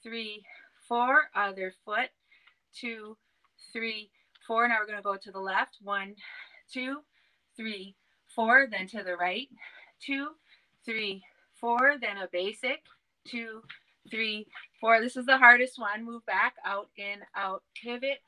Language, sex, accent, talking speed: English, female, American, 140 wpm